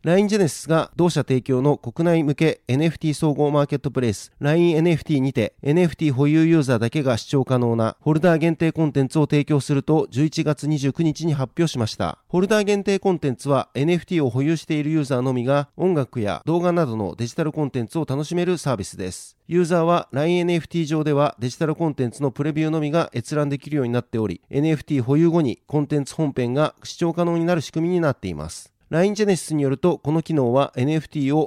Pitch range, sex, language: 135-165 Hz, male, Japanese